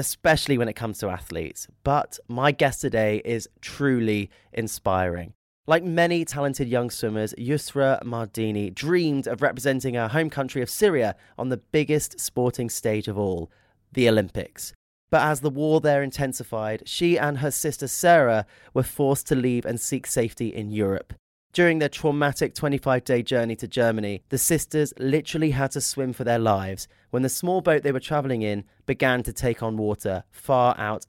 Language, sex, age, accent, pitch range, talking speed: English, male, 30-49, British, 110-145 Hz, 170 wpm